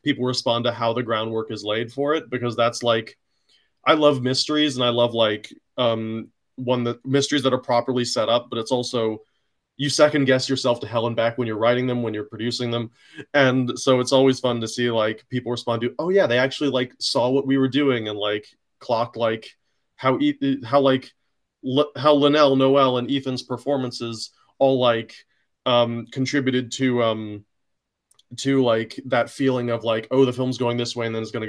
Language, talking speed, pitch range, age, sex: English, 200 wpm, 110-130 Hz, 30-49, male